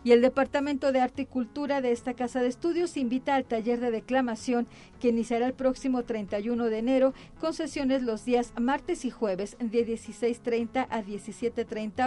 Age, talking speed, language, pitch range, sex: 40-59, 175 wpm, Spanish, 230-265 Hz, female